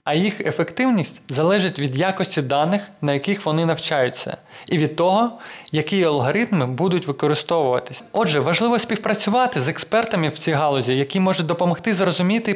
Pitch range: 150-205 Hz